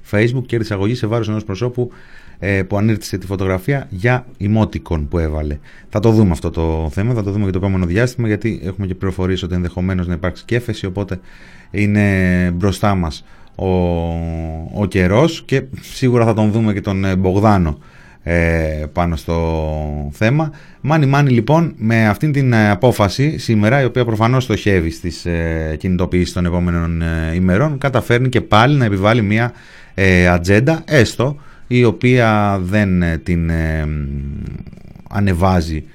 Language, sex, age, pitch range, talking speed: Greek, male, 30-49, 85-115 Hz, 145 wpm